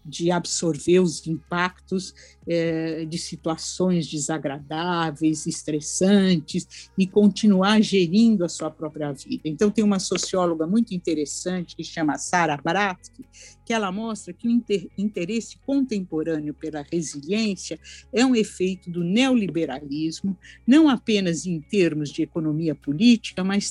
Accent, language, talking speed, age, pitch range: Brazilian, Portuguese, 120 wpm, 60-79, 165-215 Hz